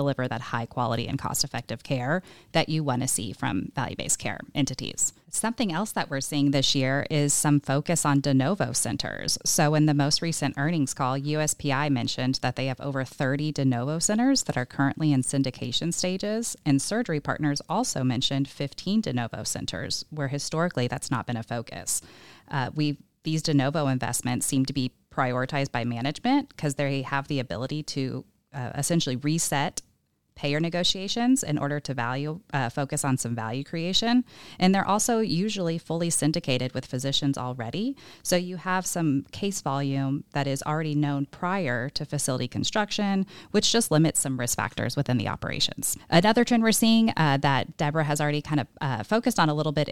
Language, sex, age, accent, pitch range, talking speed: English, female, 30-49, American, 135-165 Hz, 180 wpm